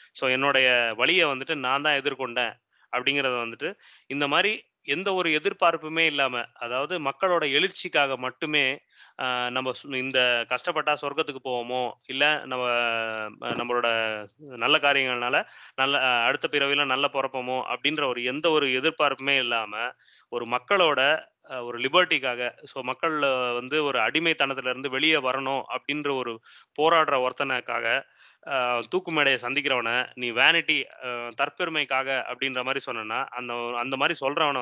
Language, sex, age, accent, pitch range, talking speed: Tamil, male, 20-39, native, 125-155 Hz, 120 wpm